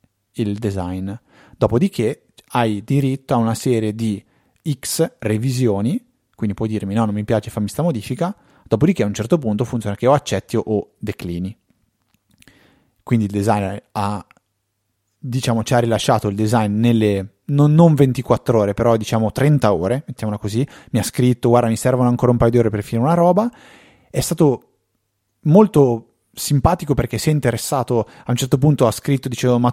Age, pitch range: 30-49, 105-130 Hz